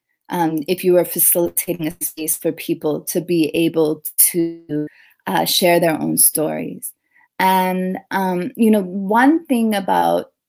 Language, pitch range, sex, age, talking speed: Tamil, 170-210 Hz, female, 30-49, 145 wpm